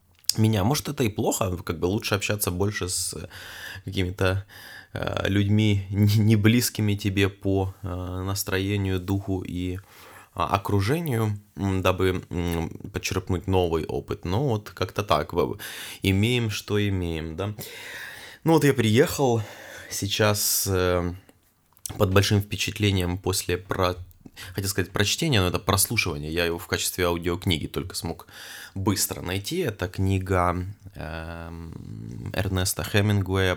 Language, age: Russian, 20-39